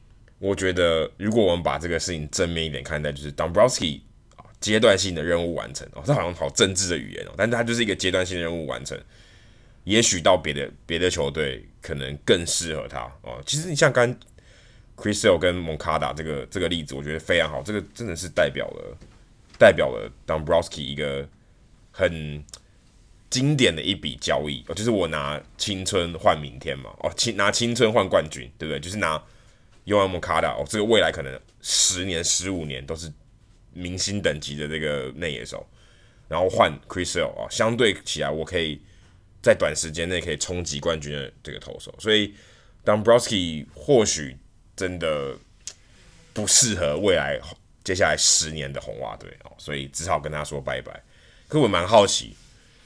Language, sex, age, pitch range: Chinese, male, 20-39, 75-110 Hz